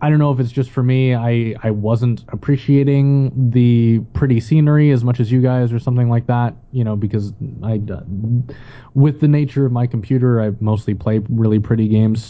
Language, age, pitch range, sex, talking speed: English, 20-39, 105-125 Hz, male, 200 wpm